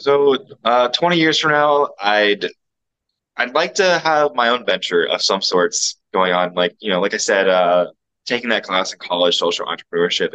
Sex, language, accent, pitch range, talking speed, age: male, English, American, 90-120 Hz, 190 wpm, 20-39